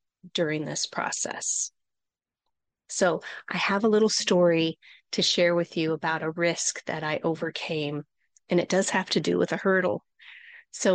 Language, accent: English, American